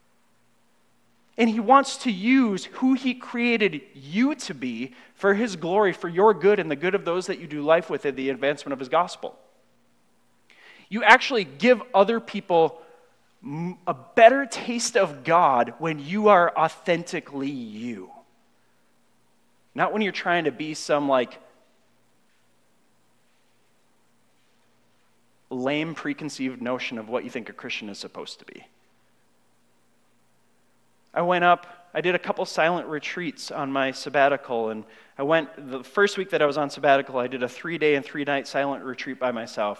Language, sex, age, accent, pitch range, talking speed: English, male, 30-49, American, 135-175 Hz, 155 wpm